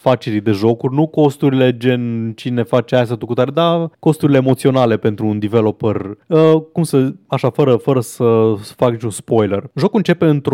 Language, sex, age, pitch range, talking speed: Romanian, male, 20-39, 115-160 Hz, 160 wpm